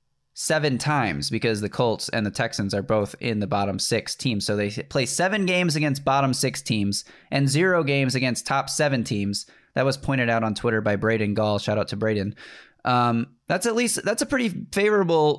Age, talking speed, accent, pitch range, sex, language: 20-39, 200 wpm, American, 120-170 Hz, male, English